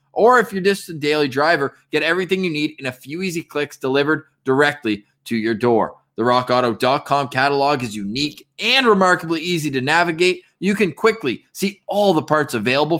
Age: 20-39